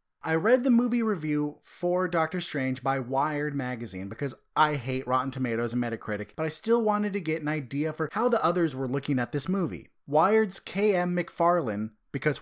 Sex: male